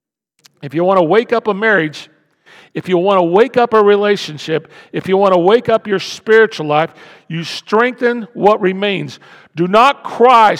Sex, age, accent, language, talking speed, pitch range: male, 50-69, American, English, 180 wpm, 195-270 Hz